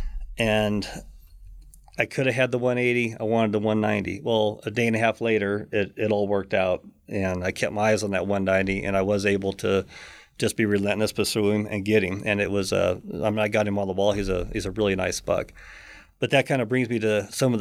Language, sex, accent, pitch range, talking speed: English, male, American, 100-115 Hz, 240 wpm